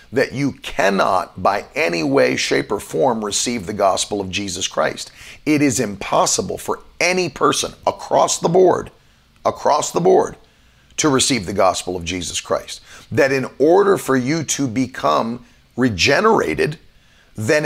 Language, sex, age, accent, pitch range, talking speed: English, male, 40-59, American, 110-130 Hz, 145 wpm